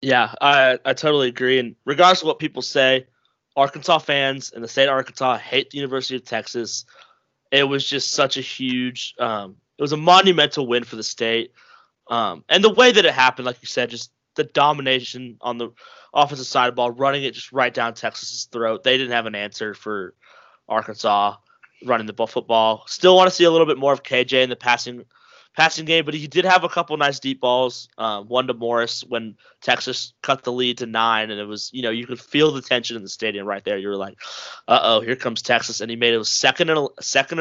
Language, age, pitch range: English, 20-39, 115-140 Hz